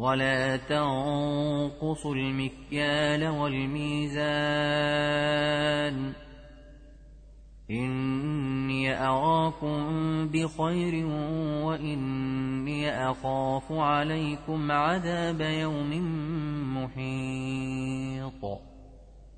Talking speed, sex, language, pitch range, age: 40 wpm, male, Arabic, 135-160 Hz, 30-49